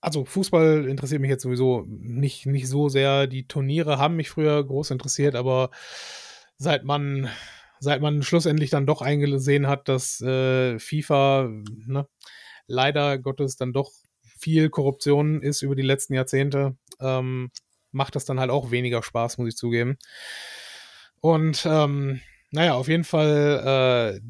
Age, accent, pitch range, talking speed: 30-49, German, 130-155 Hz, 150 wpm